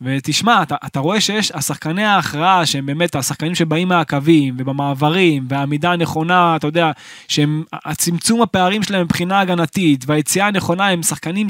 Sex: male